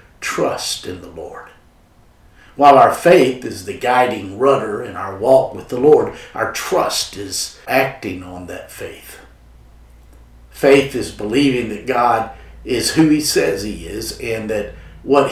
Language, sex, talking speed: English, male, 150 wpm